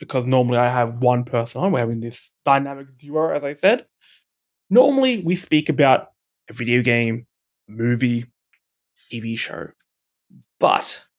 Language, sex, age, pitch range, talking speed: English, male, 20-39, 130-175 Hz, 140 wpm